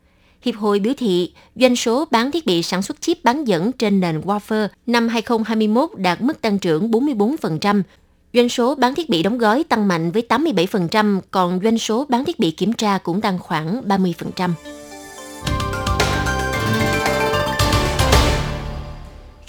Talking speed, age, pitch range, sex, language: 145 wpm, 20-39, 185-245 Hz, female, Vietnamese